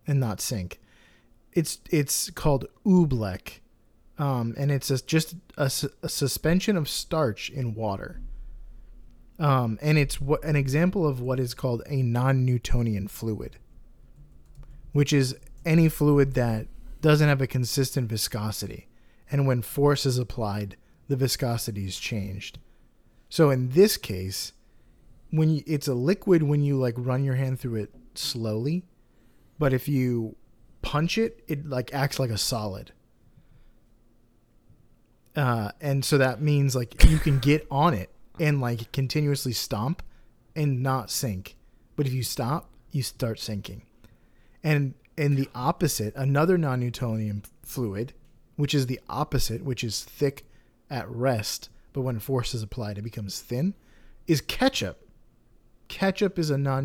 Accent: American